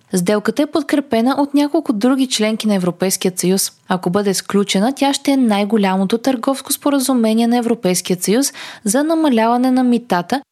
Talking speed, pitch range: 150 wpm, 195-270 Hz